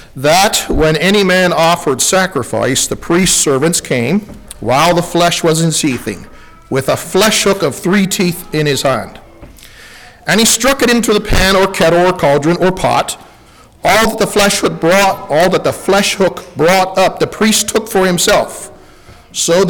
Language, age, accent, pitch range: English, 50-69, American, 150-195 Hz